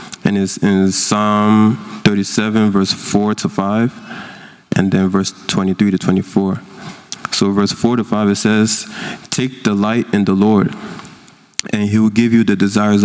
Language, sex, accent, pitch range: English, male, American, 100-115 Hz